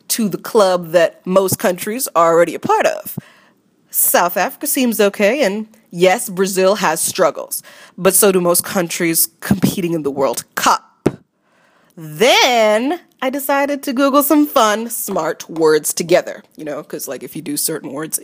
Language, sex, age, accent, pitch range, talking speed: English, female, 30-49, American, 175-235 Hz, 160 wpm